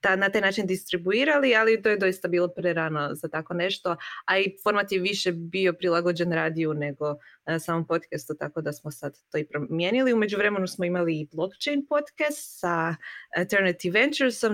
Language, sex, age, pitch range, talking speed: Croatian, female, 20-39, 165-210 Hz, 175 wpm